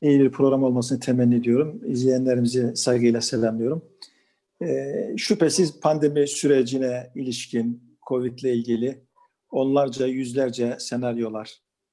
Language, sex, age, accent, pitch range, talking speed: Turkish, male, 50-69, native, 125-155 Hz, 100 wpm